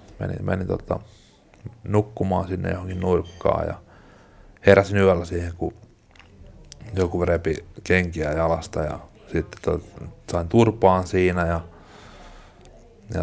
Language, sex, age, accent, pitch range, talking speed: Finnish, male, 30-49, native, 85-100 Hz, 105 wpm